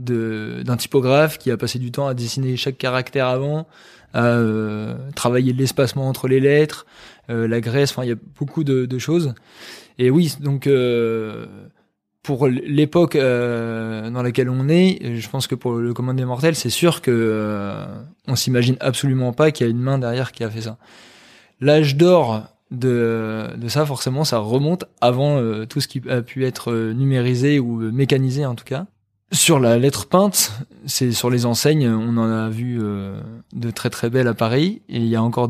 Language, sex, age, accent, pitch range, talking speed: French, male, 20-39, French, 115-140 Hz, 190 wpm